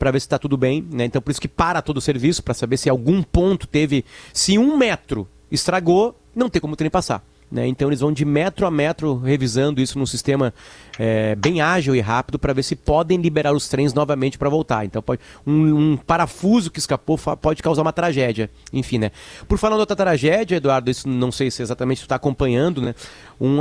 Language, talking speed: Portuguese, 215 wpm